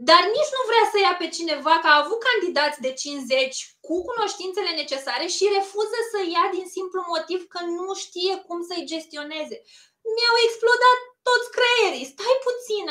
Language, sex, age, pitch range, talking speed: Romanian, female, 20-39, 275-370 Hz, 165 wpm